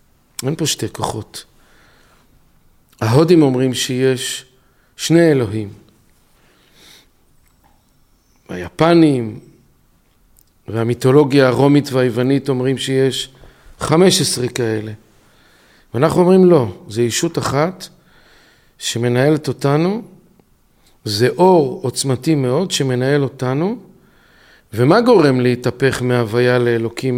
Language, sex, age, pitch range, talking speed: Hebrew, male, 50-69, 120-155 Hz, 80 wpm